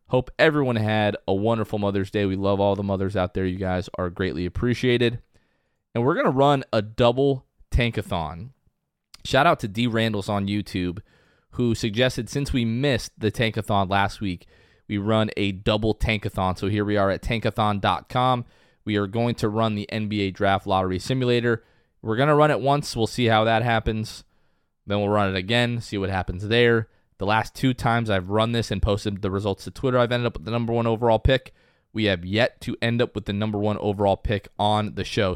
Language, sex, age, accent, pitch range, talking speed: English, male, 20-39, American, 100-125 Hz, 205 wpm